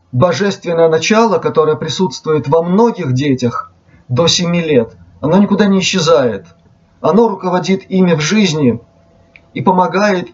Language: Russian